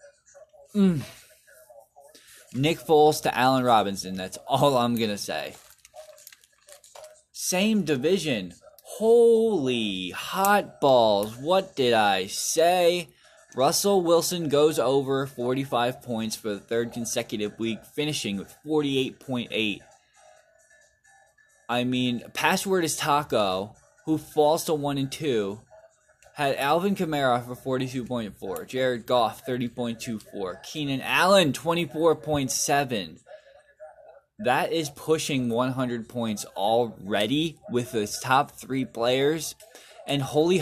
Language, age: English, 20-39